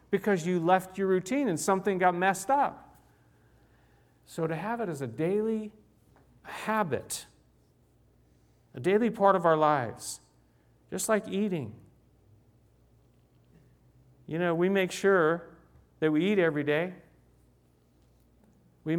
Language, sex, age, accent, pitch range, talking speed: English, male, 50-69, American, 125-170 Hz, 120 wpm